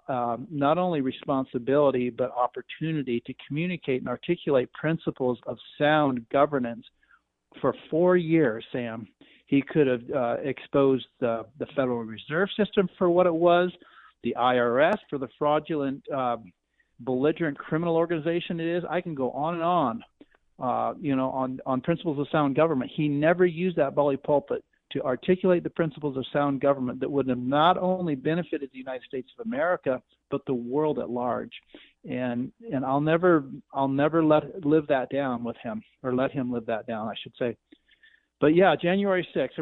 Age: 50-69